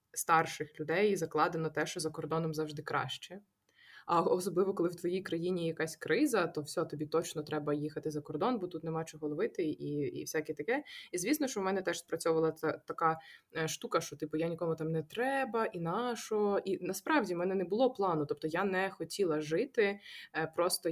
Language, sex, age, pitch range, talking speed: Ukrainian, female, 20-39, 160-195 Hz, 190 wpm